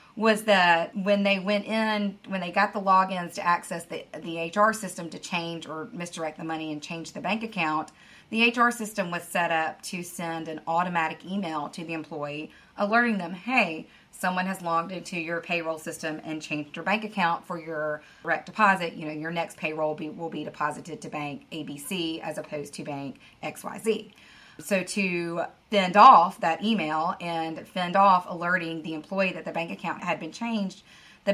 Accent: American